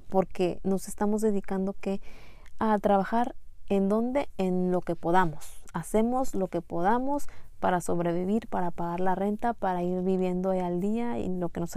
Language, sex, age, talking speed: Spanish, female, 30-49, 170 wpm